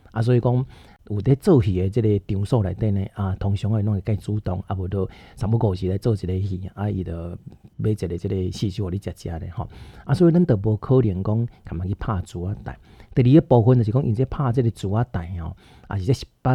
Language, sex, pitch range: Chinese, male, 95-120 Hz